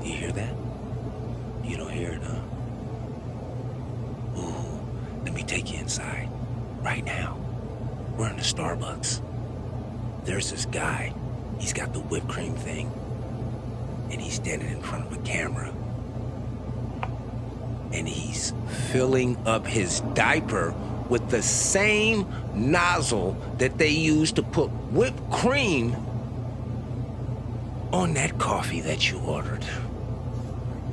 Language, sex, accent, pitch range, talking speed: English, male, American, 110-125 Hz, 115 wpm